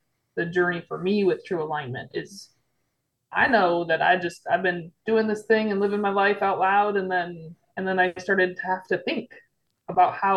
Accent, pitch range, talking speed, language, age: American, 165-195 Hz, 210 wpm, English, 20-39